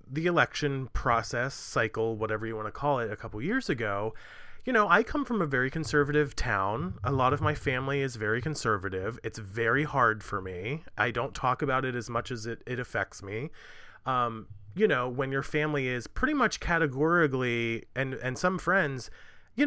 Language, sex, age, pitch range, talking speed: English, male, 30-49, 120-165 Hz, 190 wpm